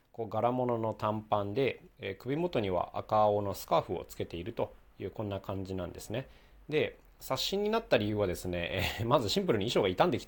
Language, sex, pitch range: Japanese, male, 95-150 Hz